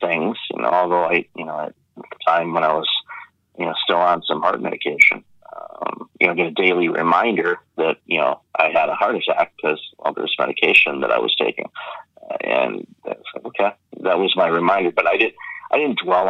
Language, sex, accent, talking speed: English, male, American, 210 wpm